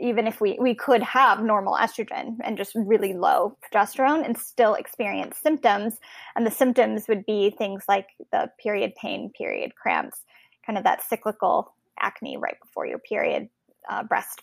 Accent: American